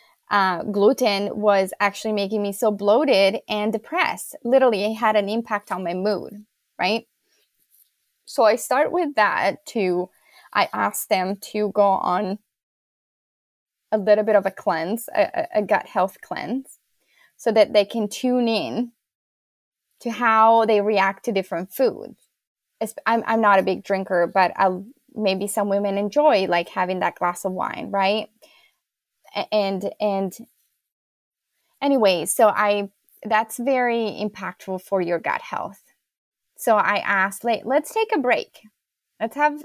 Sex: female